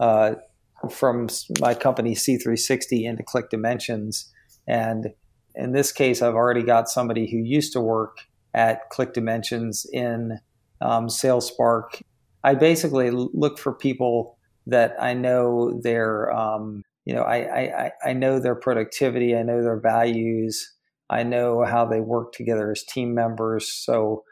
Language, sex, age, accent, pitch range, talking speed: English, male, 40-59, American, 115-125 Hz, 150 wpm